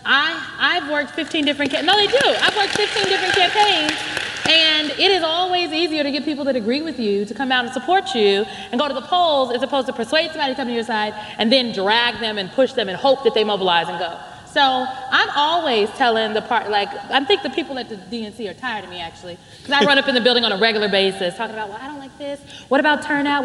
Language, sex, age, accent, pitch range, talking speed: English, female, 30-49, American, 240-330 Hz, 255 wpm